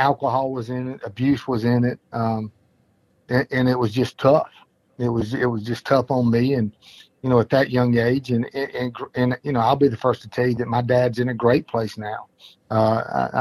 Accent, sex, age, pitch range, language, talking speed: American, male, 50-69, 115-130 Hz, English, 235 wpm